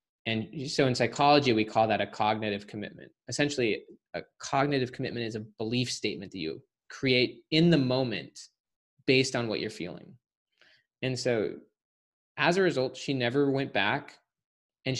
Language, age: English, 20-39